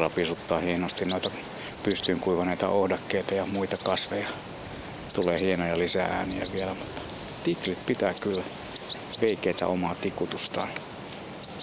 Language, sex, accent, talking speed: Finnish, male, native, 110 wpm